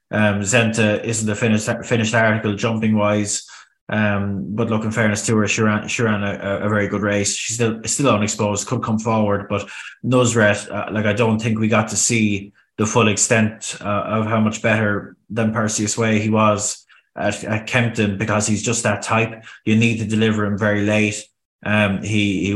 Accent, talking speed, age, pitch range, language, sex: Irish, 195 wpm, 20-39, 105-115 Hz, English, male